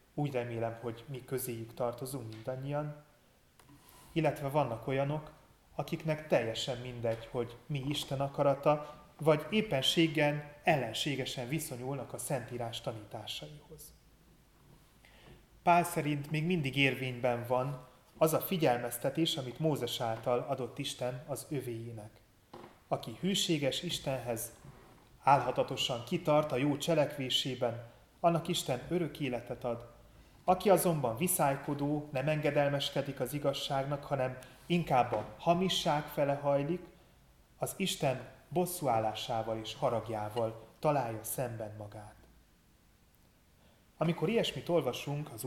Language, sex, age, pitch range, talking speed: Hungarian, male, 30-49, 125-155 Hz, 105 wpm